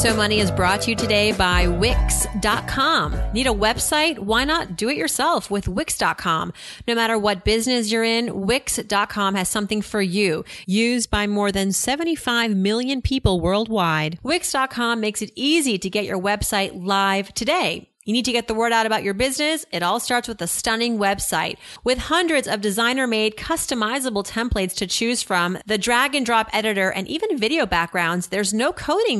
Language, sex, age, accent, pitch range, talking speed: English, female, 30-49, American, 200-250 Hz, 175 wpm